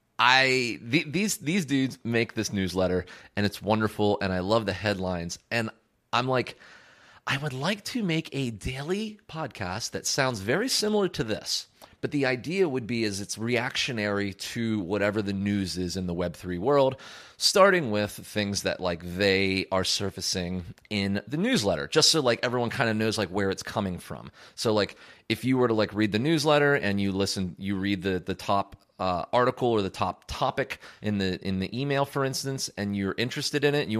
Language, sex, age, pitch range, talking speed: English, male, 30-49, 95-130 Hz, 195 wpm